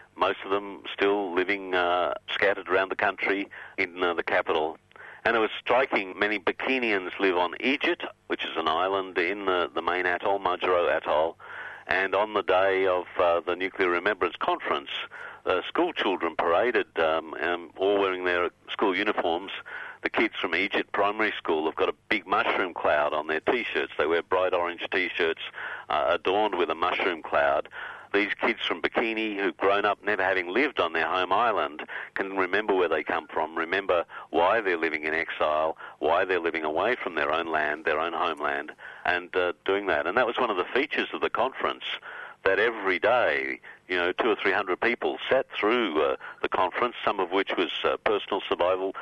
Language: English